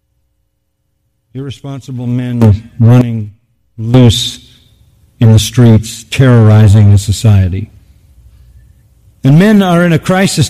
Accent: American